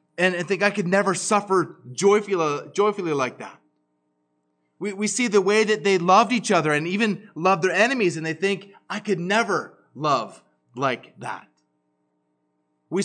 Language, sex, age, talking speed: English, male, 30-49, 160 wpm